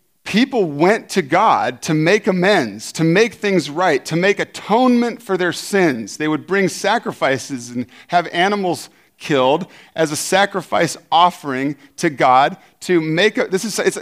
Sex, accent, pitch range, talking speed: male, American, 135-185 Hz, 160 wpm